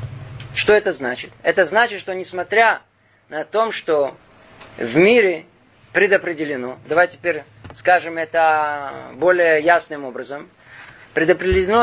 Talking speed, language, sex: 105 wpm, Russian, male